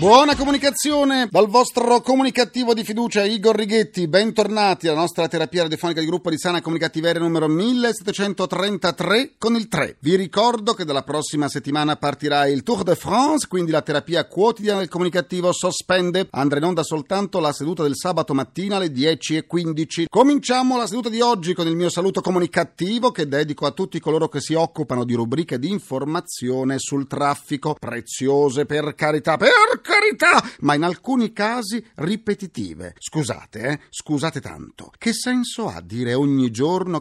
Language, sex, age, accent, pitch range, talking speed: Italian, male, 40-59, native, 145-205 Hz, 155 wpm